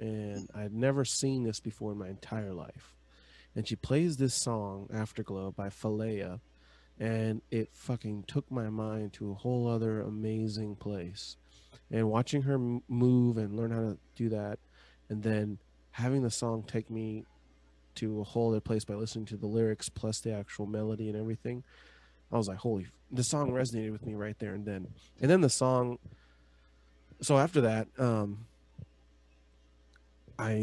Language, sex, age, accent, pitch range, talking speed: English, male, 20-39, American, 100-115 Hz, 170 wpm